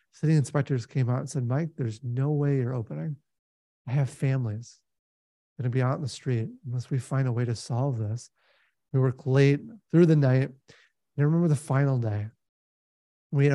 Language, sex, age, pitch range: English, male, 30-49, 125-160 Hz